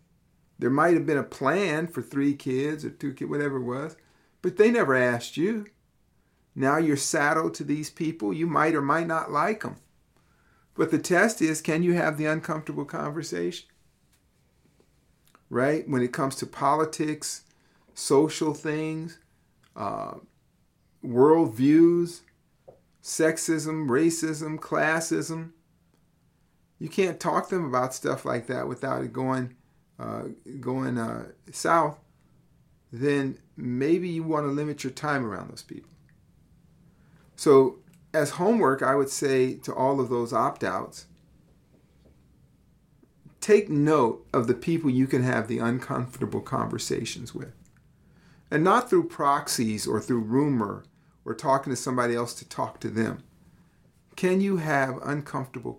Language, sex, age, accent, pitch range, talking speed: English, male, 50-69, American, 130-160 Hz, 135 wpm